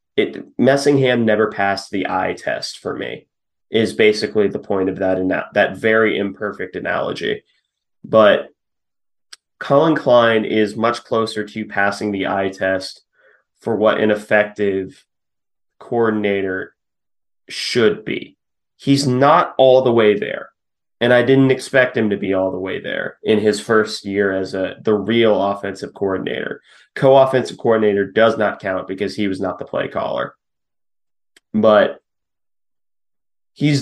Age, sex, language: 30-49, male, English